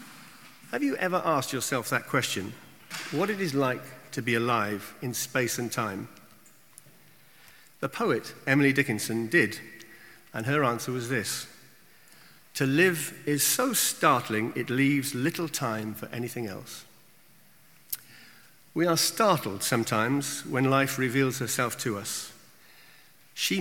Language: English